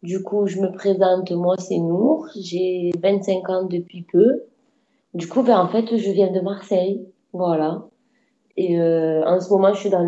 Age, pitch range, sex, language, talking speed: 20-39, 185-215 Hz, female, French, 185 wpm